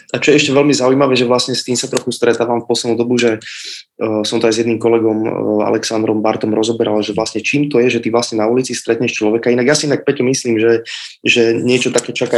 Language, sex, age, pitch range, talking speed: Slovak, male, 20-39, 110-125 Hz, 240 wpm